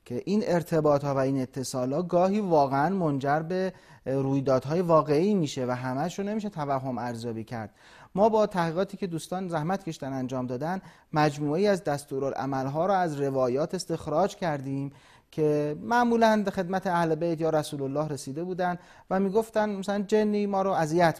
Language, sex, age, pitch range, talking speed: Persian, male, 30-49, 145-195 Hz, 160 wpm